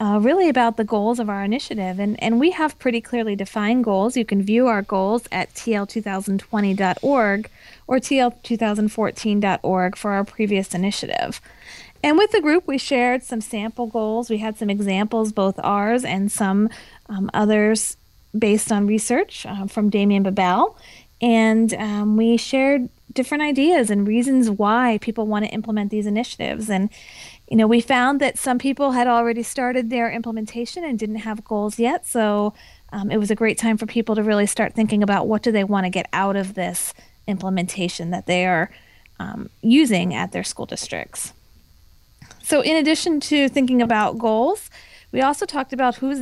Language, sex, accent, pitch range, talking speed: English, female, American, 205-245 Hz, 175 wpm